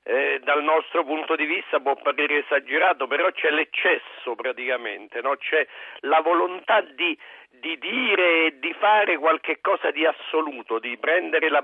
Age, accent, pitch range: 50-69, native, 140-190 Hz